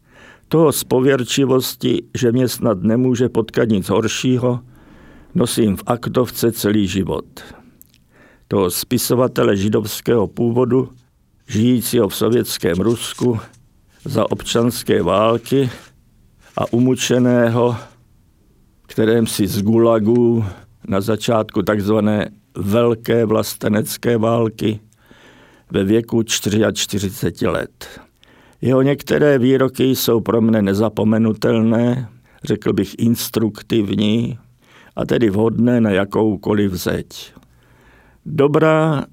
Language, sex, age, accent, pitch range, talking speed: Czech, male, 50-69, native, 105-125 Hz, 90 wpm